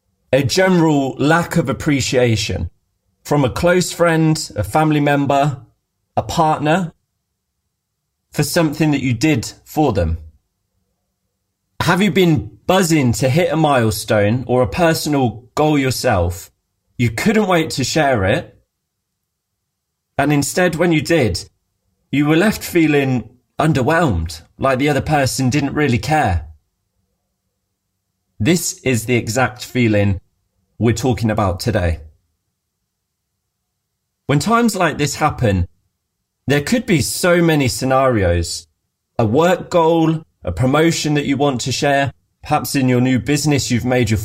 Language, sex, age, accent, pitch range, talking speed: English, male, 30-49, British, 100-150 Hz, 130 wpm